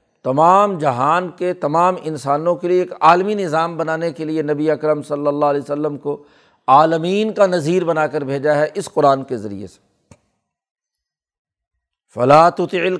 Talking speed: 150 wpm